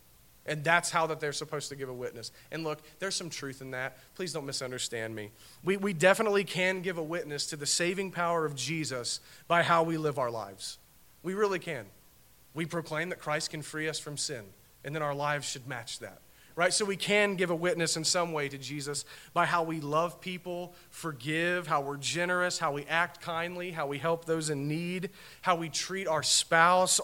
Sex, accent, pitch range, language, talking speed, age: male, American, 130-175 Hz, English, 210 wpm, 40-59